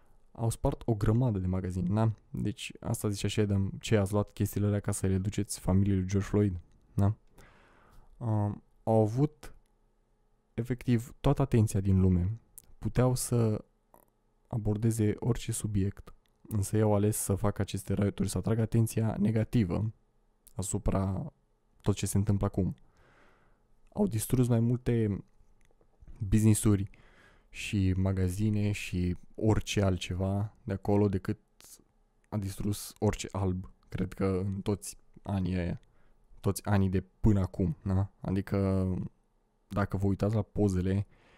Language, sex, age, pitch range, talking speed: Romanian, male, 20-39, 95-110 Hz, 130 wpm